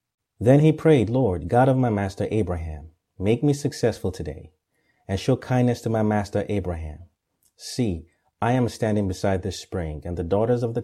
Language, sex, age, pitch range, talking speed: English, male, 30-49, 90-115 Hz, 175 wpm